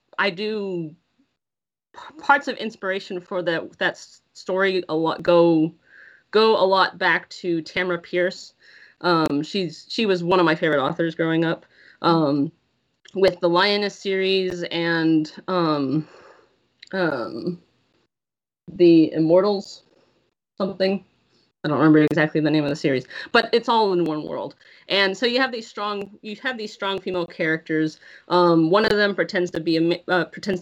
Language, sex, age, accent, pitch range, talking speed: English, female, 20-39, American, 165-200 Hz, 150 wpm